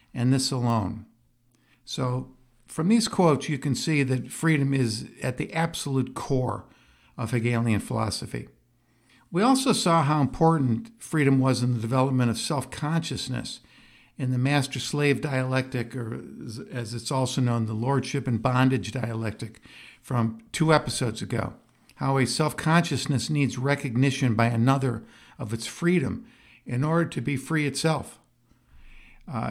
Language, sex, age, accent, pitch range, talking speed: English, male, 60-79, American, 120-145 Hz, 135 wpm